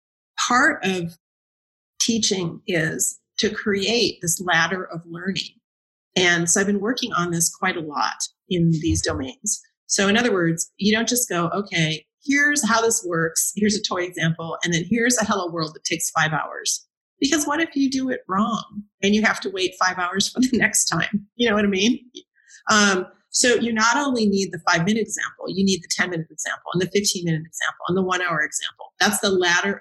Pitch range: 175-220 Hz